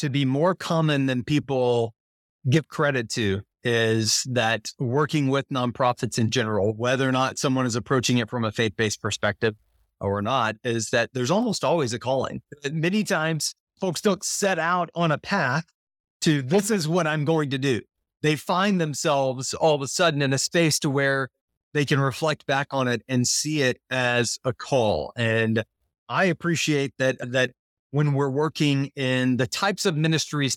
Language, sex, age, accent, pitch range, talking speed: English, male, 30-49, American, 125-155 Hz, 175 wpm